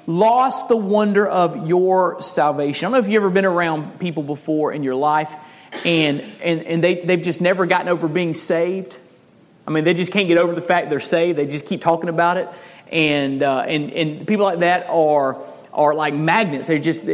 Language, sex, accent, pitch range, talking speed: English, male, American, 150-195 Hz, 210 wpm